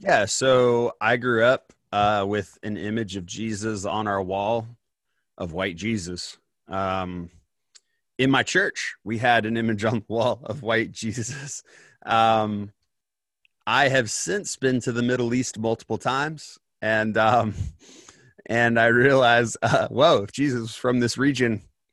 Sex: male